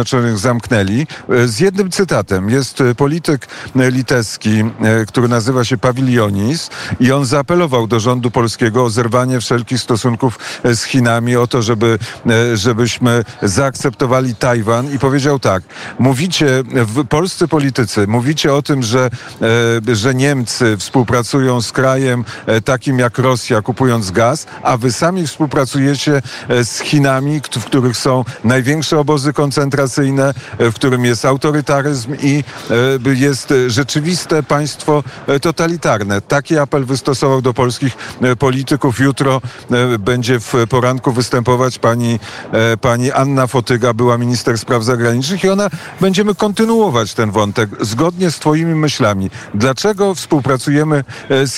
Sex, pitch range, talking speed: male, 120-145 Hz, 120 wpm